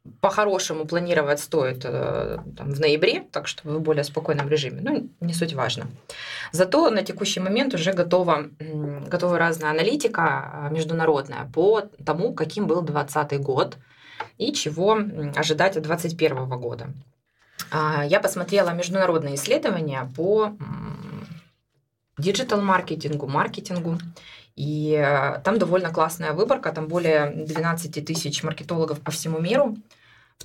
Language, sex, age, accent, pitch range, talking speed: Russian, female, 20-39, native, 150-180 Hz, 115 wpm